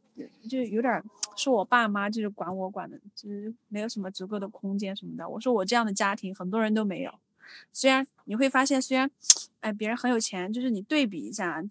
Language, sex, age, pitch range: Chinese, female, 20-39, 200-250 Hz